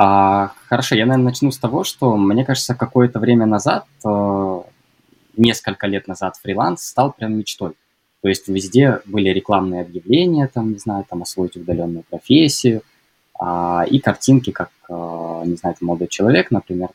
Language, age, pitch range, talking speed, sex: Russian, 20-39, 95-120 Hz, 140 wpm, male